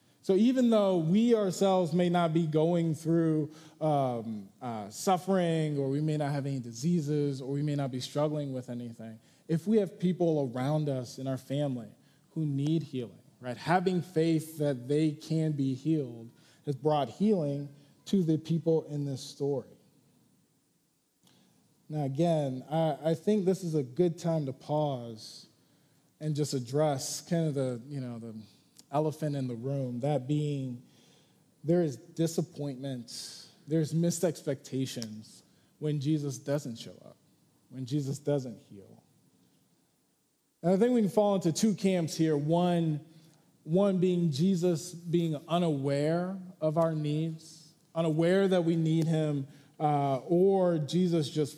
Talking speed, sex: 150 wpm, male